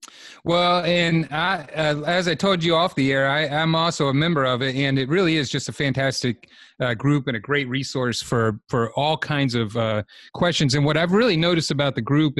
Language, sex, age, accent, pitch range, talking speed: English, male, 30-49, American, 115-140 Hz, 225 wpm